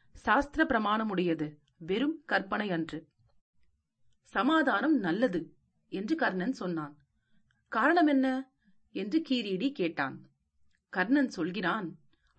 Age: 40-59